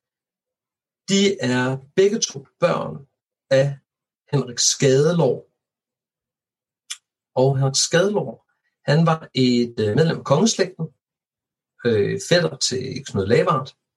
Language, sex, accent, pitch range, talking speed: Danish, male, native, 110-145 Hz, 95 wpm